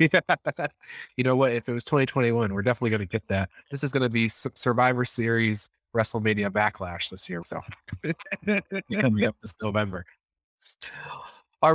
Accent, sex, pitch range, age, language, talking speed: American, male, 115-145 Hz, 30-49, English, 155 wpm